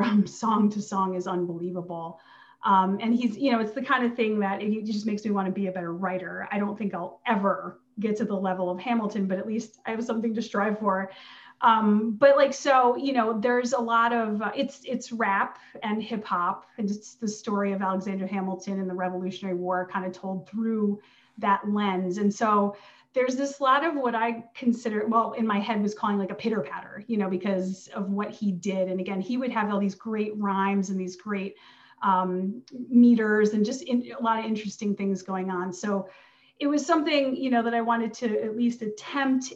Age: 30-49